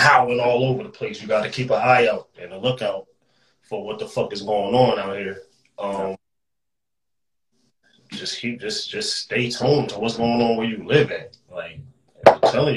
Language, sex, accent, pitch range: English, male, American, 100-125 Hz